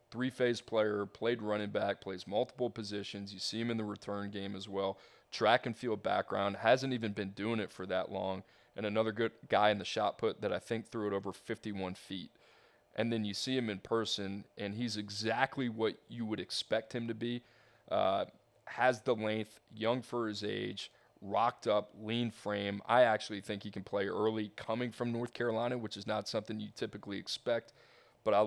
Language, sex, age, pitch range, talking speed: English, male, 20-39, 105-120 Hz, 200 wpm